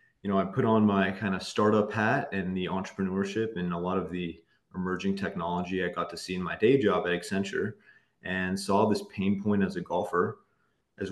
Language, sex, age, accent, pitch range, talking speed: English, male, 30-49, American, 95-105 Hz, 210 wpm